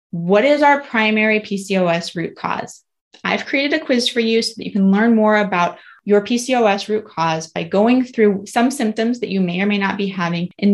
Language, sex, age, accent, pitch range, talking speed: English, female, 20-39, American, 195-250 Hz, 210 wpm